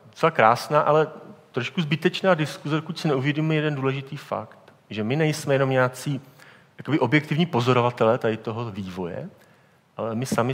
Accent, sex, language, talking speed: native, male, Czech, 140 wpm